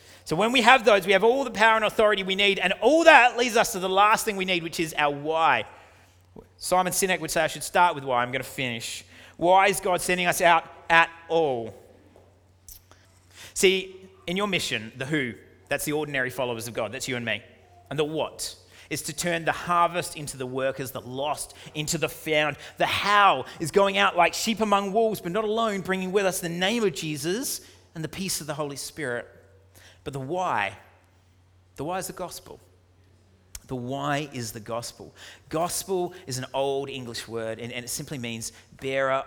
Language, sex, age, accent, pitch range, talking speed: English, male, 30-49, Australian, 110-175 Hz, 205 wpm